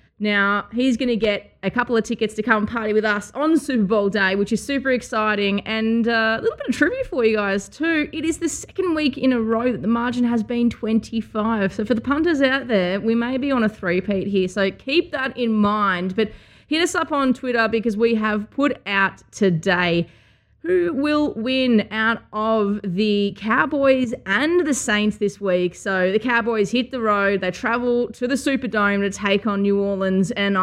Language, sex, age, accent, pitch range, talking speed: English, female, 20-39, Australian, 205-265 Hz, 210 wpm